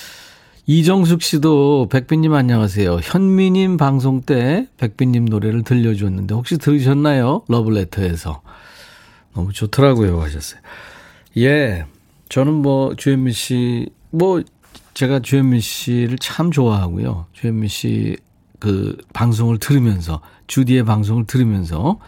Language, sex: Korean, male